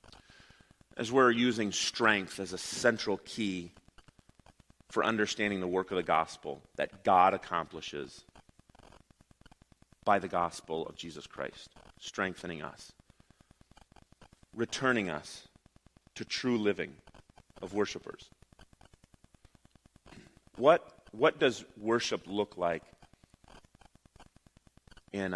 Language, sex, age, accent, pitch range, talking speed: English, male, 30-49, American, 95-120 Hz, 95 wpm